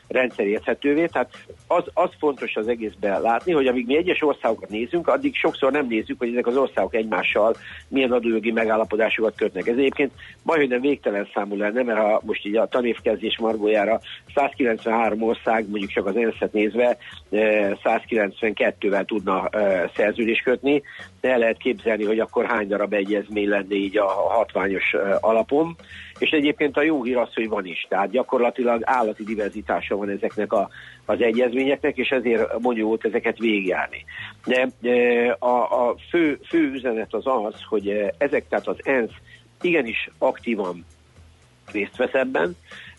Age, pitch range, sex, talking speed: 50-69, 105-130 Hz, male, 150 wpm